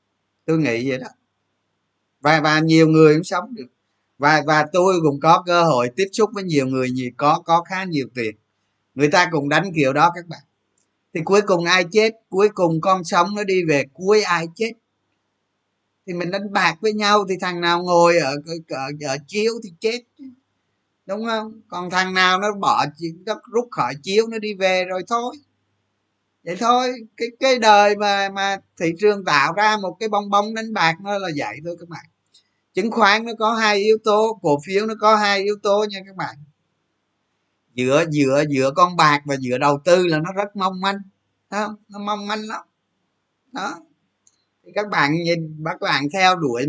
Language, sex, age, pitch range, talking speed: Vietnamese, male, 20-39, 145-205 Hz, 195 wpm